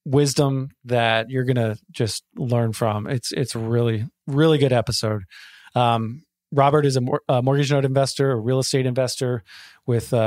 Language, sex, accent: English, male, American